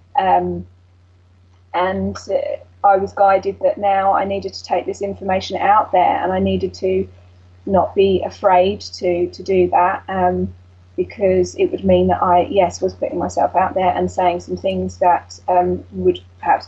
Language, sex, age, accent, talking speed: English, female, 10-29, British, 175 wpm